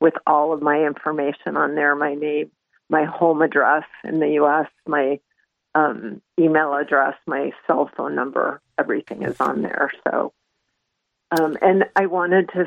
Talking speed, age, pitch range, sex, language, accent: 155 wpm, 50-69, 155-180 Hz, female, English, American